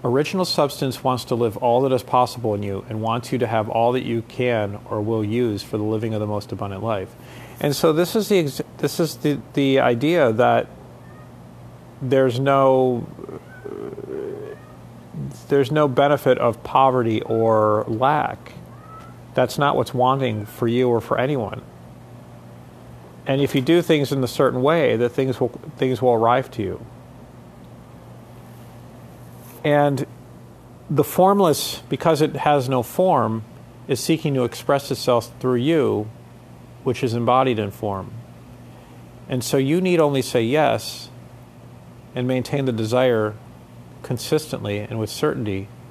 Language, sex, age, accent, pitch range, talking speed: English, male, 40-59, American, 115-140 Hz, 145 wpm